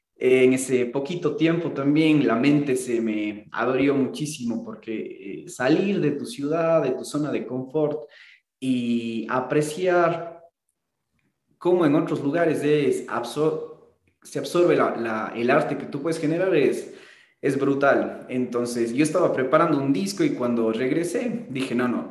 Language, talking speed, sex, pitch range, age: Spanish, 145 wpm, male, 125-160 Hz, 20-39